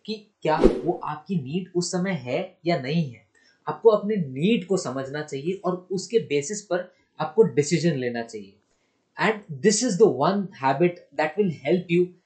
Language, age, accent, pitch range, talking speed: Hindi, 20-39, native, 160-210 Hz, 65 wpm